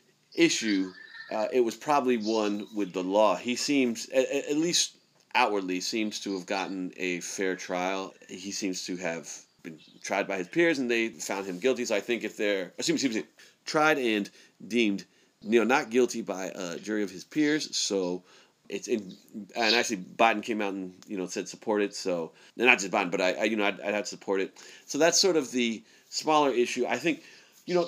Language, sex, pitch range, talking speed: English, male, 95-130 Hz, 210 wpm